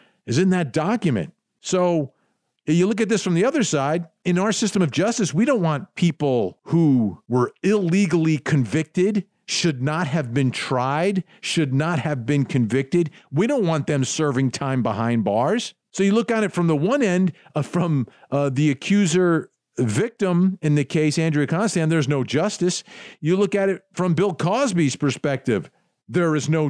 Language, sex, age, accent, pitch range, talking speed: English, male, 50-69, American, 140-195 Hz, 175 wpm